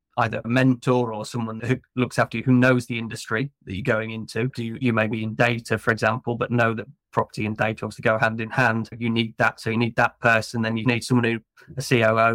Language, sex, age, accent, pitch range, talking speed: English, male, 30-49, British, 110-125 Hz, 250 wpm